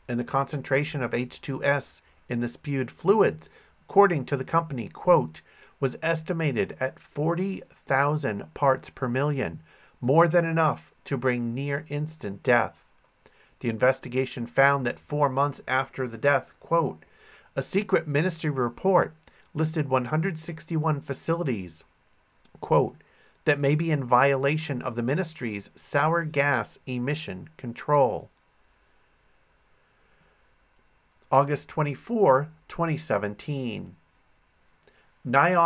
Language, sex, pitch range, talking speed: English, male, 125-155 Hz, 100 wpm